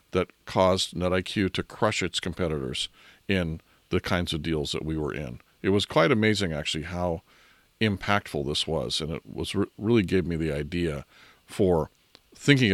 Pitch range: 80-105 Hz